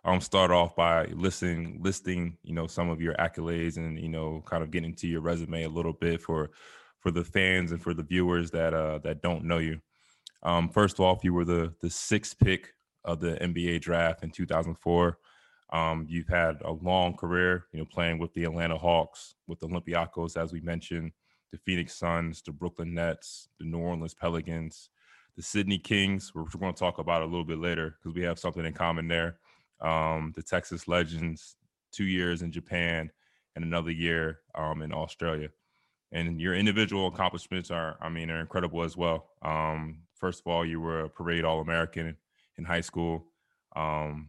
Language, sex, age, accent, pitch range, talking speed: English, male, 20-39, American, 80-90 Hz, 190 wpm